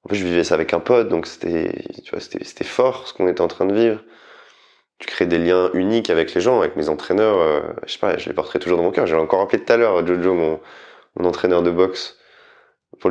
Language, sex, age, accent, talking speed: French, male, 20-39, French, 260 wpm